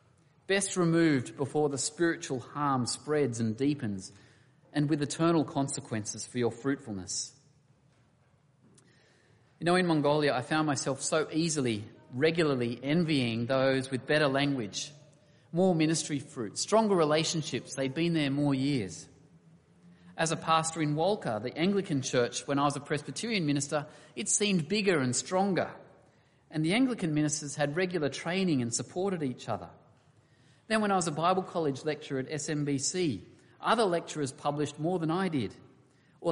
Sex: male